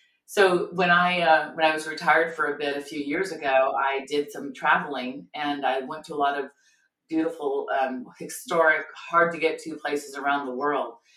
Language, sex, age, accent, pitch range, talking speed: English, female, 30-49, American, 145-180 Hz, 200 wpm